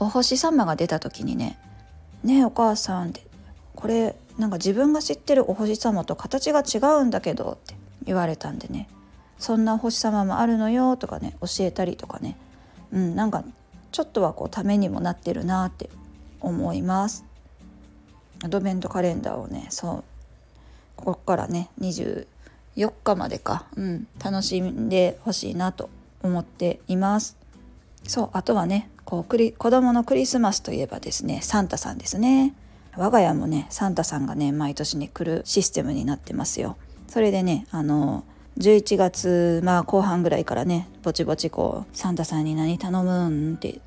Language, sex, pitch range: Japanese, female, 160-220 Hz